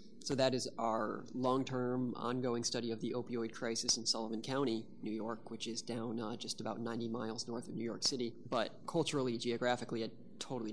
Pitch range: 115-135 Hz